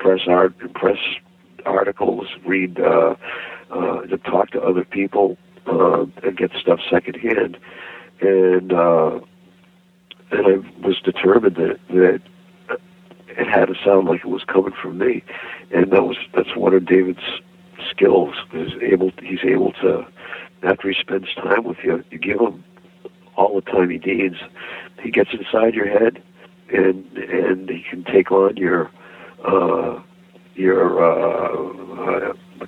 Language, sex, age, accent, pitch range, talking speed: English, male, 60-79, American, 90-125 Hz, 145 wpm